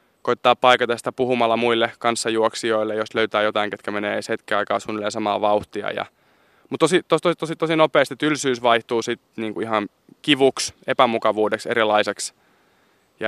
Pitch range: 105-125 Hz